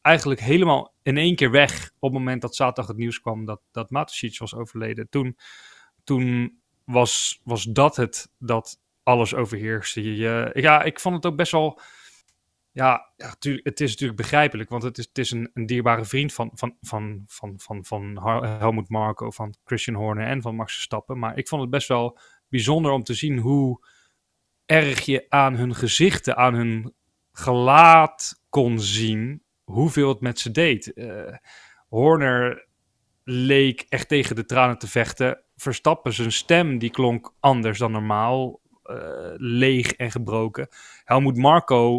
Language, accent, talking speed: Dutch, Dutch, 165 wpm